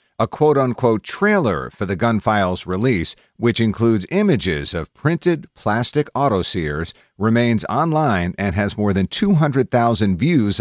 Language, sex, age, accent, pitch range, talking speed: English, male, 50-69, American, 90-125 Hz, 135 wpm